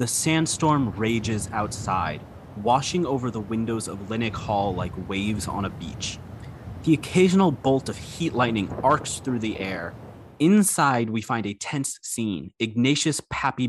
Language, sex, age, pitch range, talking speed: English, male, 30-49, 105-150 Hz, 150 wpm